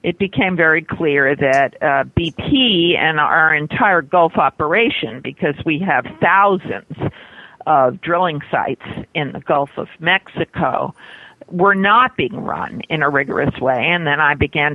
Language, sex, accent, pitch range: English, female, American, 145-180 Hz